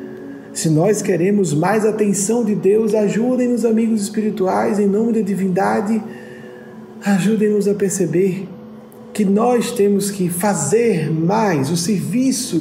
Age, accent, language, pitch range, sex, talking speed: 40-59, Brazilian, Portuguese, 155-230 Hz, male, 120 wpm